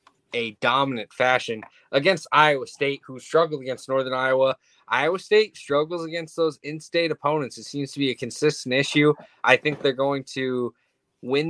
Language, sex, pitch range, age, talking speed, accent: English, male, 125-145 Hz, 20-39, 160 wpm, American